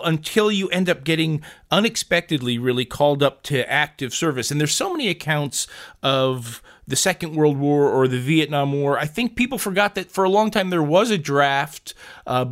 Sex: male